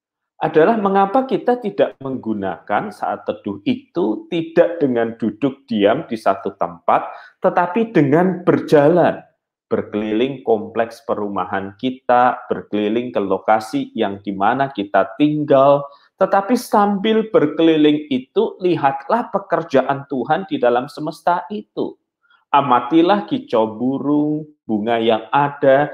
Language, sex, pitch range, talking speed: Malay, male, 125-195 Hz, 110 wpm